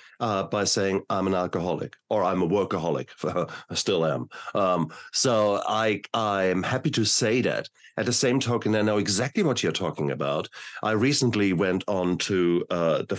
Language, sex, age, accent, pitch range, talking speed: English, male, 50-69, German, 95-125 Hz, 180 wpm